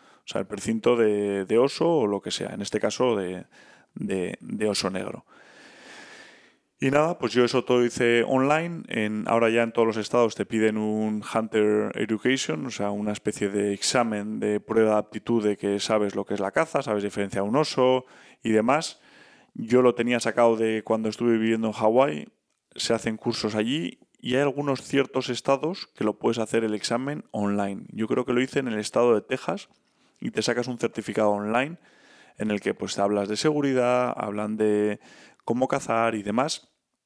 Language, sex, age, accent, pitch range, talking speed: Spanish, male, 20-39, Spanish, 105-125 Hz, 195 wpm